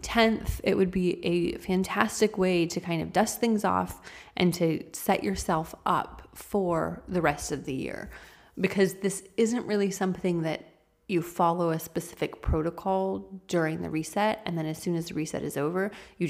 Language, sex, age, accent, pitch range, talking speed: English, female, 30-49, American, 160-190 Hz, 175 wpm